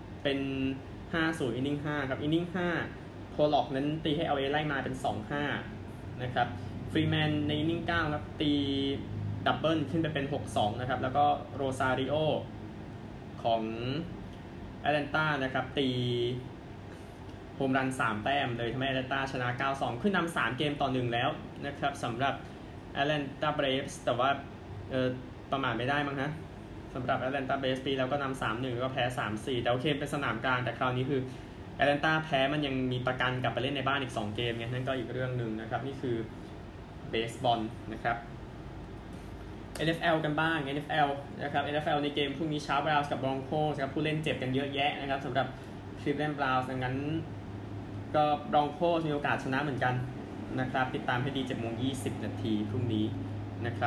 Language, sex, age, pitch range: Thai, male, 20-39, 115-145 Hz